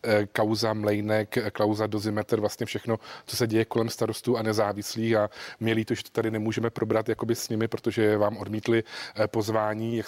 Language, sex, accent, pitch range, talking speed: Czech, male, native, 110-115 Hz, 175 wpm